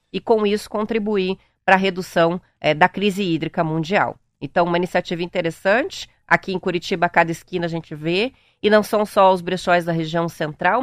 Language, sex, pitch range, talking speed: Portuguese, female, 170-225 Hz, 190 wpm